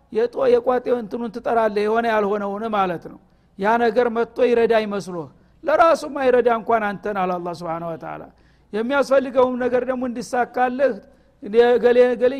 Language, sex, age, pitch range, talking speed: Amharic, male, 60-79, 210-250 Hz, 120 wpm